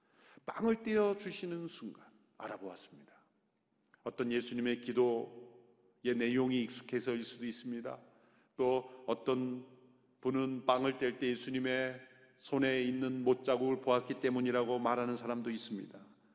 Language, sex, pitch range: Korean, male, 125-195 Hz